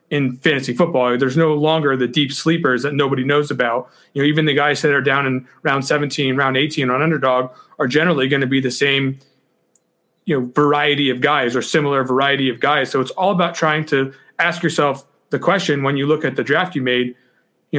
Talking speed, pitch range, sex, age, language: 215 wpm, 140-170 Hz, male, 30-49, English